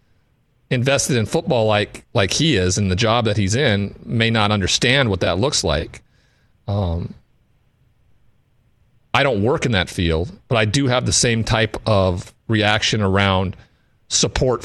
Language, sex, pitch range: English, male, 100-125 Hz